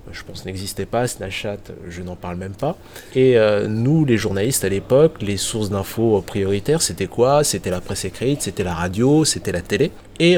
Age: 30-49